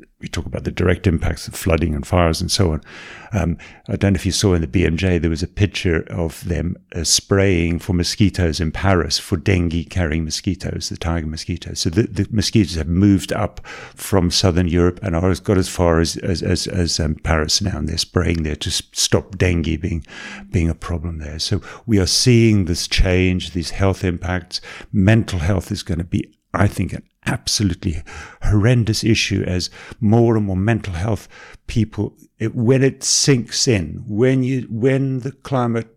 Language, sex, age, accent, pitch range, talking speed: English, male, 50-69, British, 85-115 Hz, 190 wpm